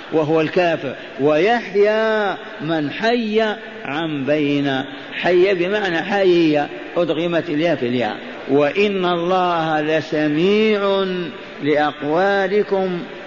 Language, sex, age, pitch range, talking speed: Arabic, male, 50-69, 150-190 Hz, 75 wpm